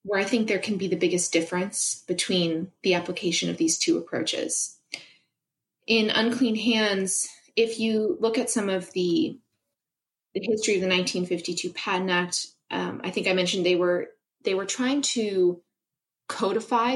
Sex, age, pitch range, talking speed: female, 20-39, 175-220 Hz, 155 wpm